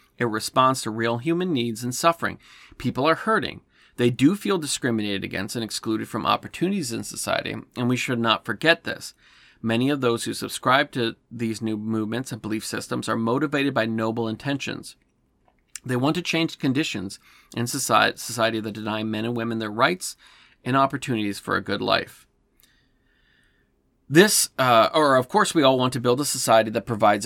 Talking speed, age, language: 175 wpm, 40-59, English